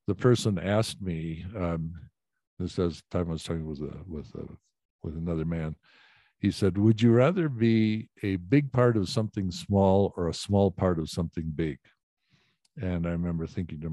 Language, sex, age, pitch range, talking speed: English, male, 60-79, 85-100 Hz, 180 wpm